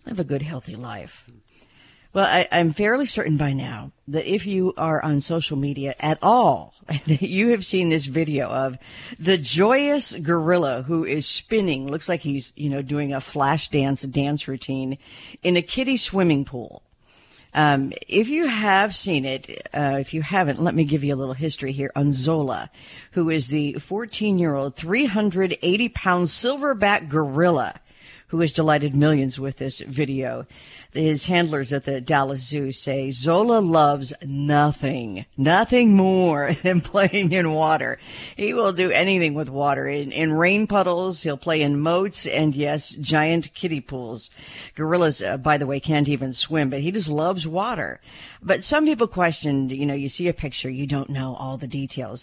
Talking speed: 170 wpm